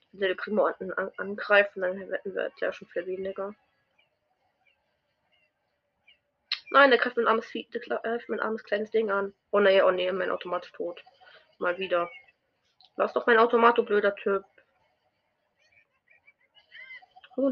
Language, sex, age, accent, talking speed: German, female, 20-39, German, 140 wpm